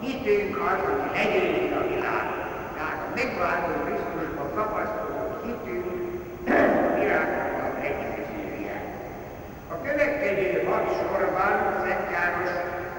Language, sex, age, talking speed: Hungarian, male, 60-79, 100 wpm